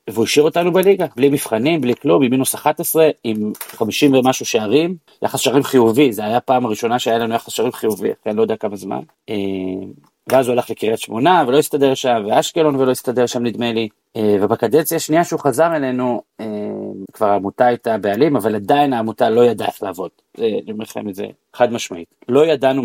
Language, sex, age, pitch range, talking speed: Hebrew, male, 40-59, 110-130 Hz, 180 wpm